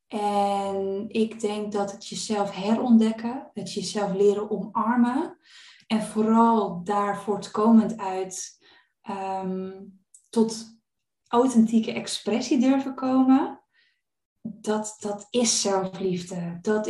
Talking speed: 90 wpm